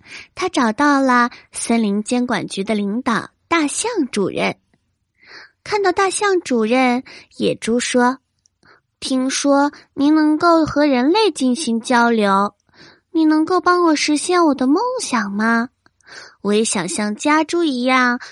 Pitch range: 220-310 Hz